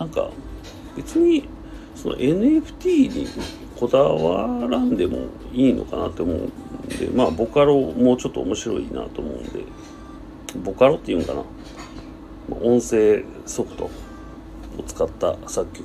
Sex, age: male, 40-59